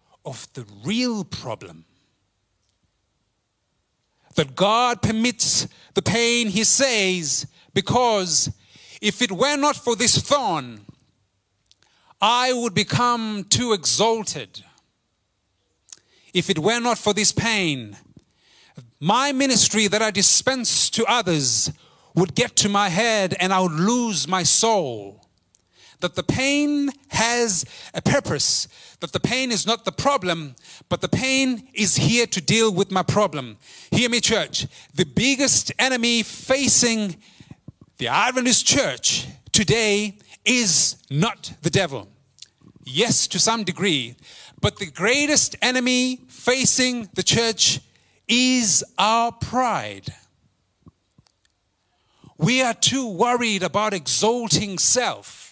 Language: English